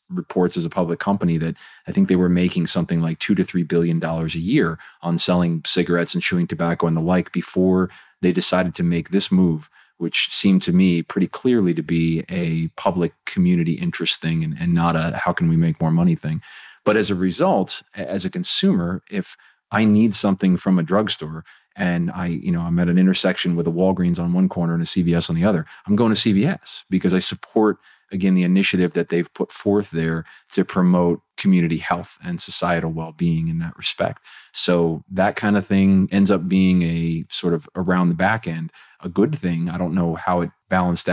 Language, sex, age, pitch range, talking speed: English, male, 30-49, 85-95 Hz, 205 wpm